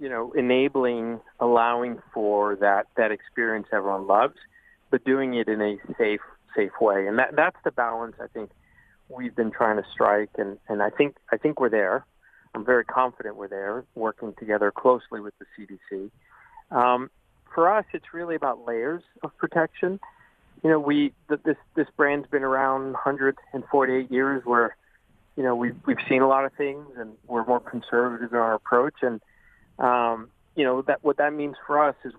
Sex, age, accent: male, 40-59, American